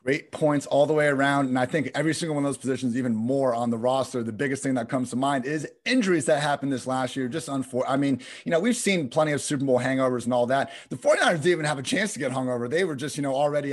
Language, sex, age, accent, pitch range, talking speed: English, male, 30-49, American, 130-160 Hz, 295 wpm